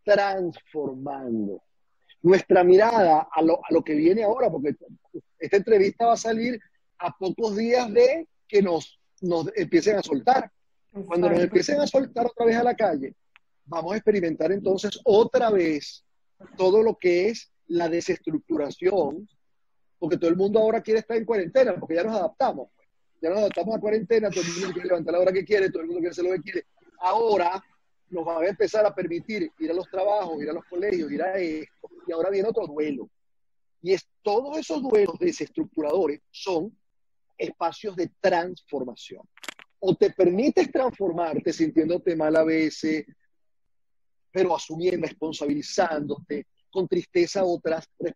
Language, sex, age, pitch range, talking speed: Spanish, male, 40-59, 170-225 Hz, 160 wpm